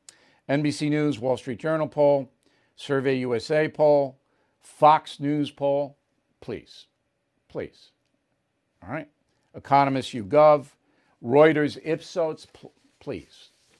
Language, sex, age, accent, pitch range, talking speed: English, male, 50-69, American, 125-155 Hz, 95 wpm